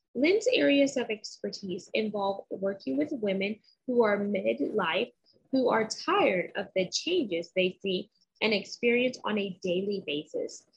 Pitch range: 195-275 Hz